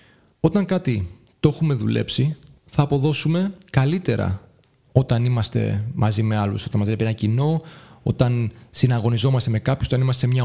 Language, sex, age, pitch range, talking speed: Greek, male, 30-49, 115-145 Hz, 145 wpm